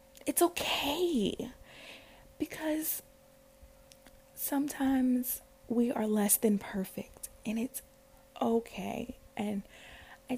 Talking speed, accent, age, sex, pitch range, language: 80 wpm, American, 20-39, female, 205-255 Hz, English